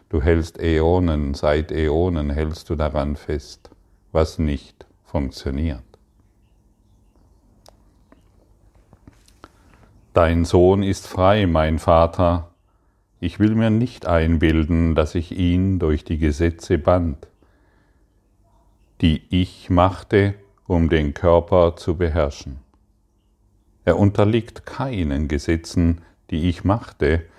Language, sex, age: German, male, 50-69